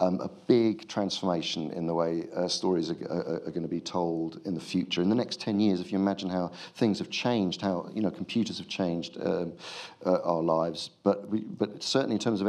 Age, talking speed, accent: 40-59, 230 wpm, British